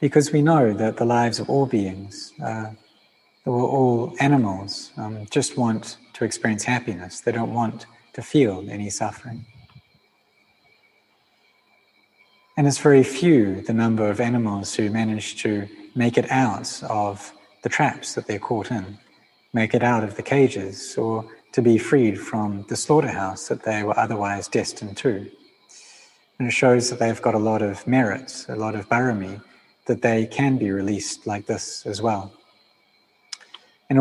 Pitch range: 105-125 Hz